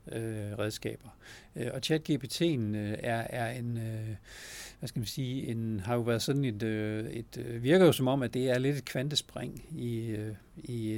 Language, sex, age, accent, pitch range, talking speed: Danish, male, 60-79, native, 110-130 Hz, 165 wpm